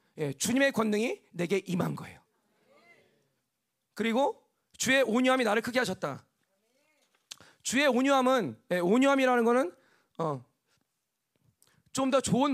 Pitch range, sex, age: 190-265 Hz, male, 40-59